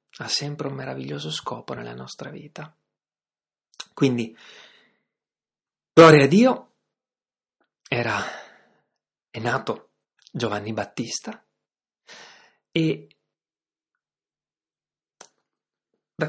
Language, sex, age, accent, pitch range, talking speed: Italian, male, 30-49, native, 130-180 Hz, 65 wpm